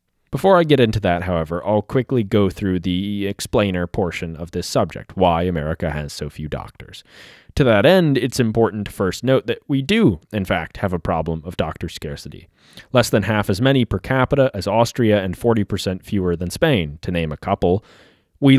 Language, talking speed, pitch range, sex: English, 195 wpm, 90-125 Hz, male